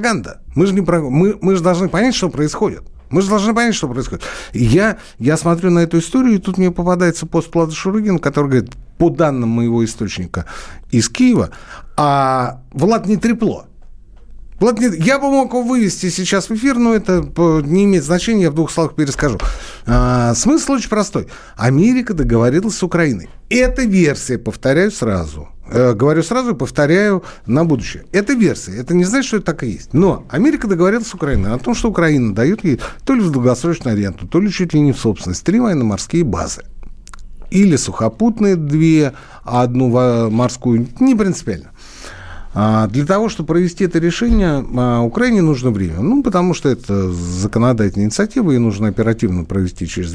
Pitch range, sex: 115-190 Hz, male